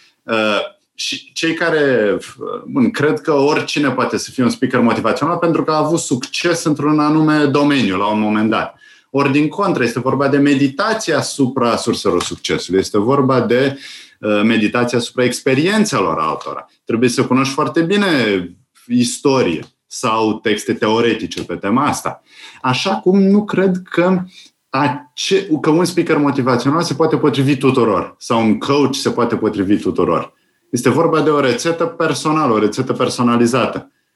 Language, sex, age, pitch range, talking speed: Romanian, male, 30-49, 120-165 Hz, 150 wpm